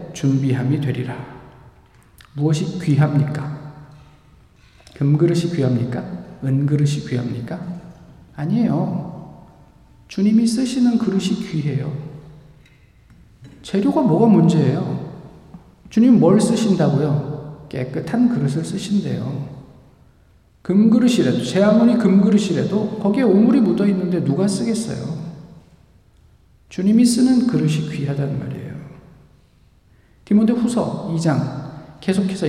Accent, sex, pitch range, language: native, male, 145-195 Hz, Korean